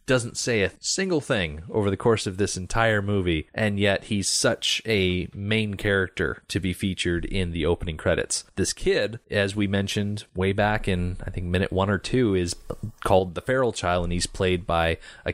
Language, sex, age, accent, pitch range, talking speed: English, male, 30-49, American, 90-105 Hz, 195 wpm